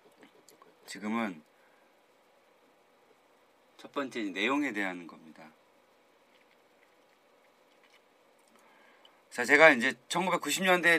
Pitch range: 105-150 Hz